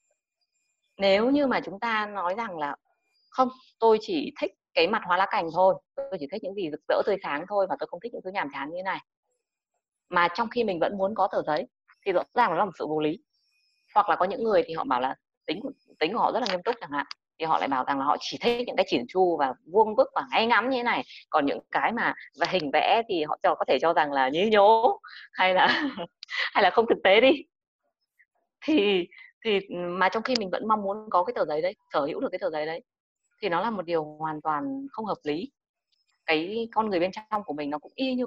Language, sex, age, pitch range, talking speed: Vietnamese, female, 20-39, 175-270 Hz, 260 wpm